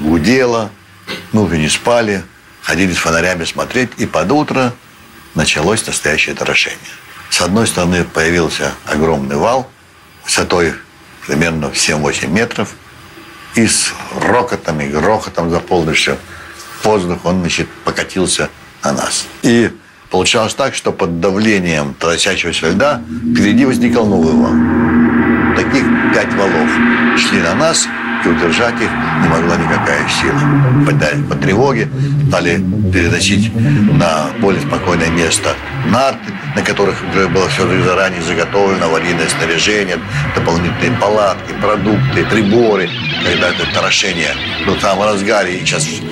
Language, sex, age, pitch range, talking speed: Russian, male, 60-79, 85-110 Hz, 120 wpm